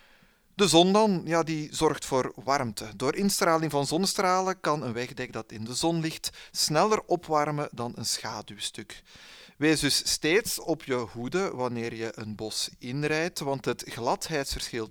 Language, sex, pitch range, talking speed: Dutch, male, 120-160 Hz, 155 wpm